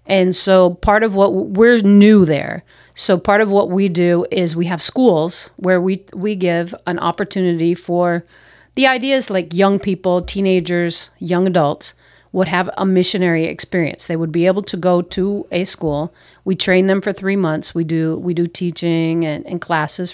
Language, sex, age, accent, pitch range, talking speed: English, female, 40-59, American, 165-195 Hz, 180 wpm